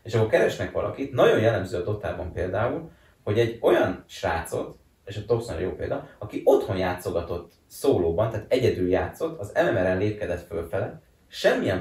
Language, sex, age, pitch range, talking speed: Hungarian, male, 30-49, 100-120 Hz, 145 wpm